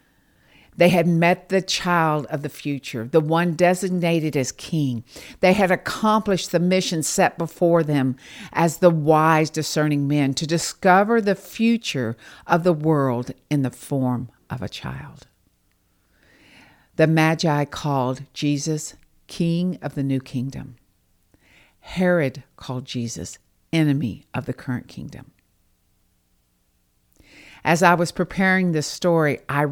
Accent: American